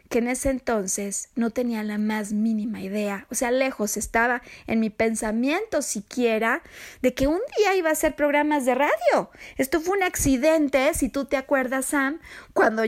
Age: 30-49